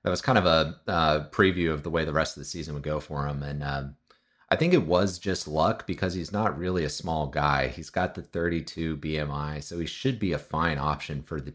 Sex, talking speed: male, 250 wpm